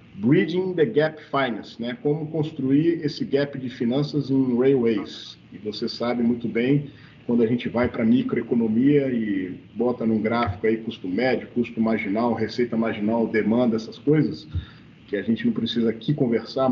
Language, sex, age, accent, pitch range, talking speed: Portuguese, male, 40-59, Brazilian, 115-165 Hz, 160 wpm